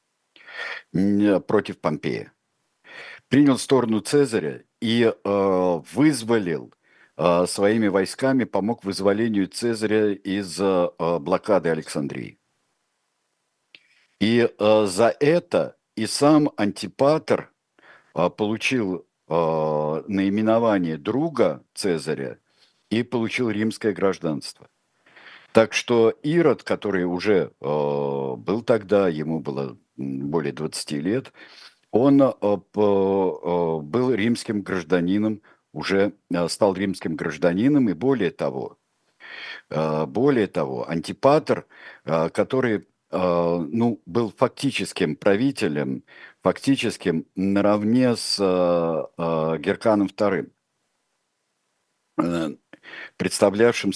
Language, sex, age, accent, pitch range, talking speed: Russian, male, 50-69, native, 85-115 Hz, 75 wpm